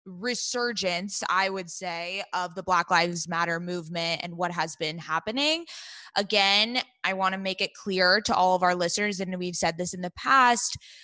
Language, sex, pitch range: English, female, 180-225 Hz